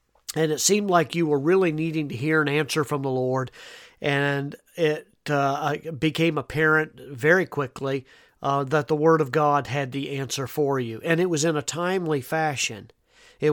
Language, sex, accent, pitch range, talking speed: English, male, American, 135-155 Hz, 180 wpm